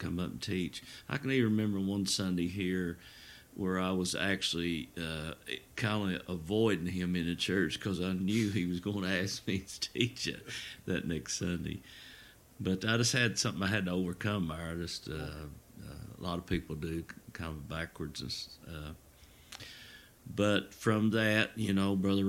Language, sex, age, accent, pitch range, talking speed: English, male, 50-69, American, 80-95 Hz, 180 wpm